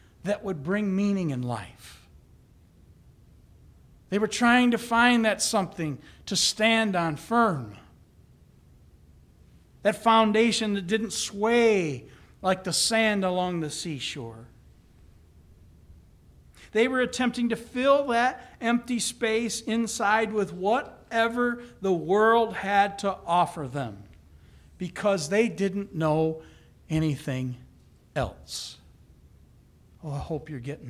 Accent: American